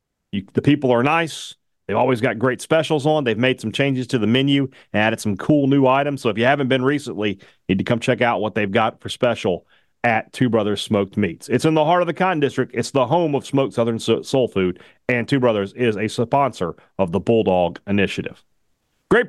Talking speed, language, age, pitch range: 225 wpm, English, 40-59, 115-150 Hz